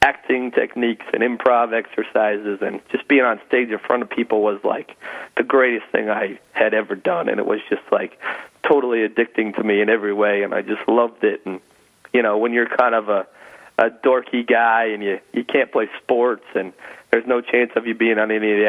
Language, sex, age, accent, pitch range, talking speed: English, male, 40-59, American, 105-125 Hz, 220 wpm